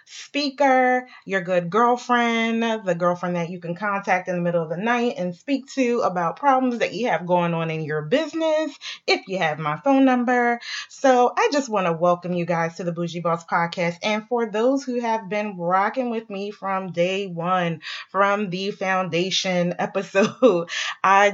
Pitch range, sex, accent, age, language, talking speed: 180-230 Hz, female, American, 20-39, English, 185 wpm